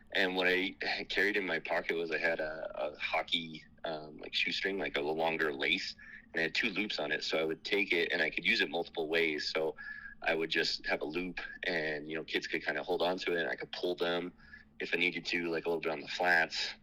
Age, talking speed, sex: 30-49, 260 wpm, male